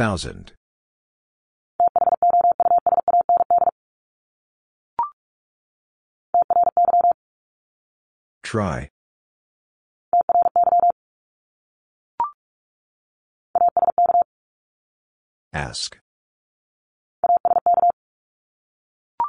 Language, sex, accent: English, female, American